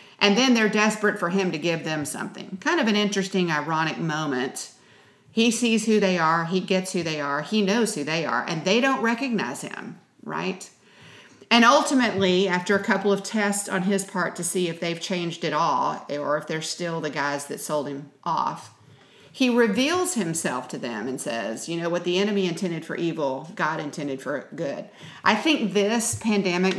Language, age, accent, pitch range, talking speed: English, 50-69, American, 165-205 Hz, 195 wpm